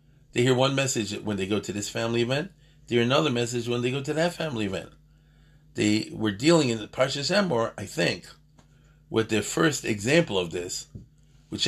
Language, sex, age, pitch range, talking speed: English, male, 40-59, 100-150 Hz, 190 wpm